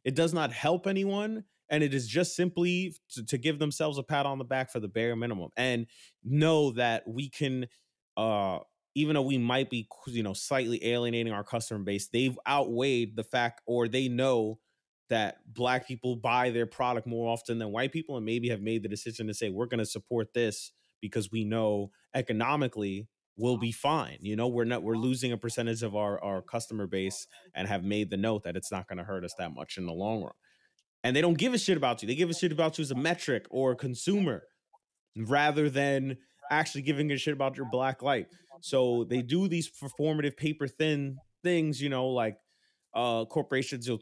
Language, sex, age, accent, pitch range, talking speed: English, male, 30-49, American, 110-140 Hz, 210 wpm